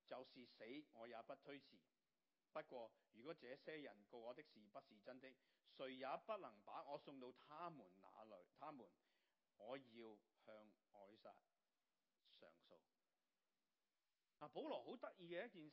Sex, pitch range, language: male, 120-170 Hz, Chinese